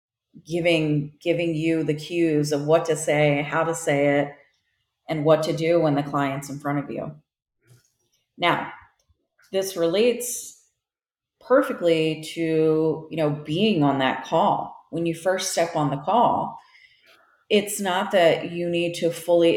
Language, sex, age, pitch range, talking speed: English, female, 30-49, 145-175 Hz, 150 wpm